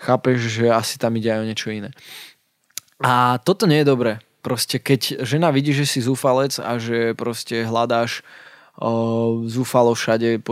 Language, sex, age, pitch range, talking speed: Slovak, male, 20-39, 115-130 Hz, 160 wpm